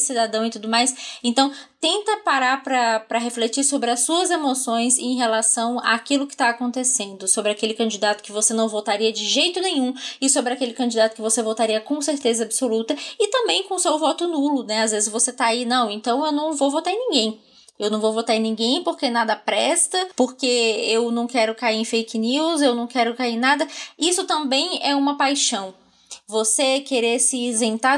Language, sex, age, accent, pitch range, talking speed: Portuguese, female, 20-39, Brazilian, 225-275 Hz, 195 wpm